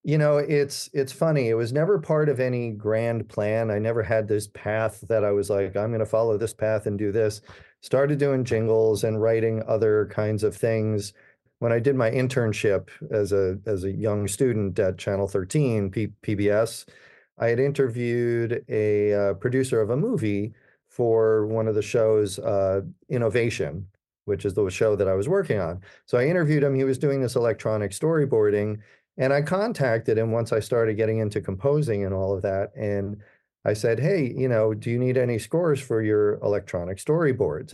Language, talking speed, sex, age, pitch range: English, 190 wpm, male, 40-59, 105-125 Hz